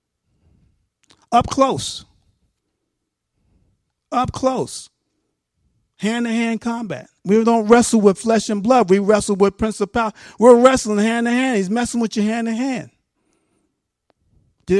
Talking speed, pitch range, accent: 105 wpm, 140-205 Hz, American